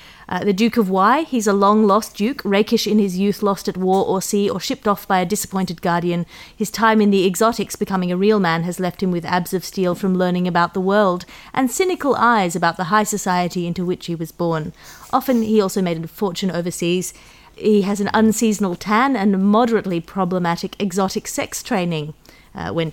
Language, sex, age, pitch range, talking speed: English, female, 30-49, 180-225 Hz, 205 wpm